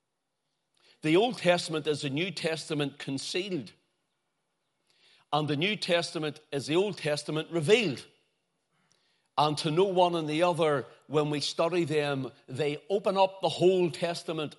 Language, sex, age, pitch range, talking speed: English, male, 60-79, 140-175 Hz, 140 wpm